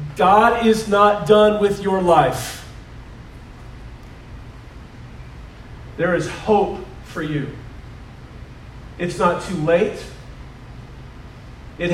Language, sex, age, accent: English, male, 40-59, American